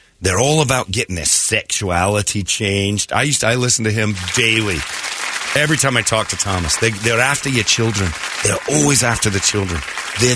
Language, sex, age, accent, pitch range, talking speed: English, male, 40-59, American, 95-125 Hz, 185 wpm